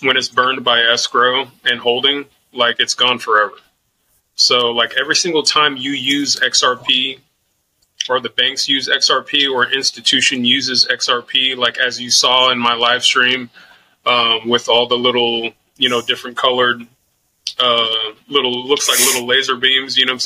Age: 20-39